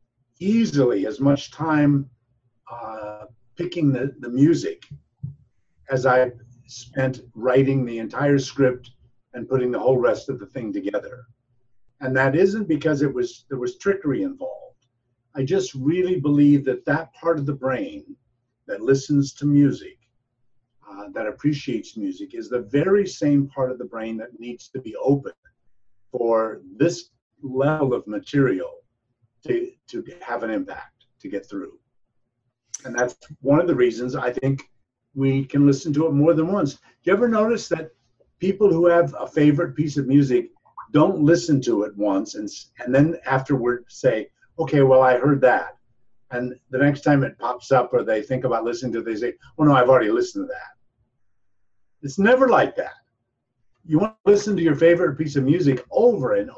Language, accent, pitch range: English, American, 120-165 Hz